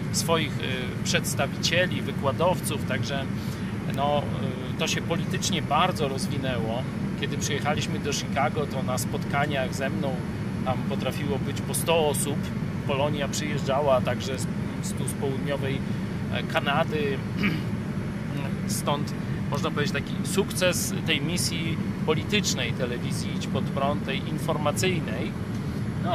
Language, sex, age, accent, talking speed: Polish, male, 40-59, native, 110 wpm